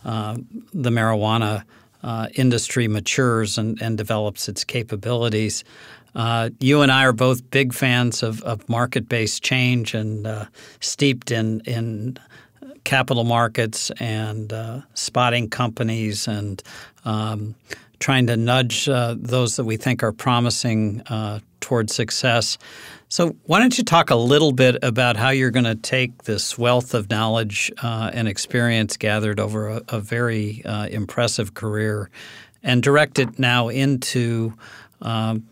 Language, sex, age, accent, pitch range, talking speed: English, male, 50-69, American, 110-125 Hz, 140 wpm